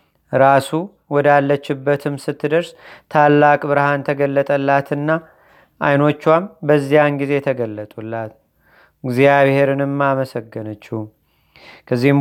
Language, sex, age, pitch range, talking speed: Amharic, male, 30-49, 140-155 Hz, 65 wpm